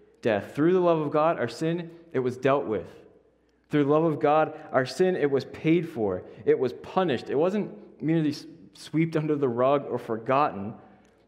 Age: 20-39